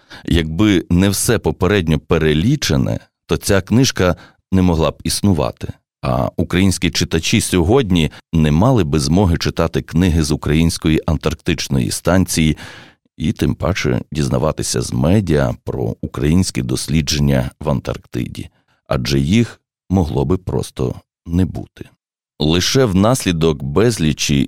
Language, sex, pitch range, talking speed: Ukrainian, male, 75-95 Hz, 115 wpm